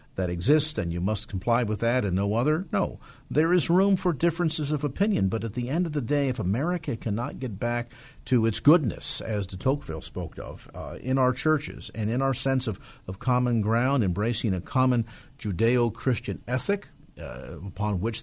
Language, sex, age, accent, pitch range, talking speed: English, male, 50-69, American, 105-150 Hz, 195 wpm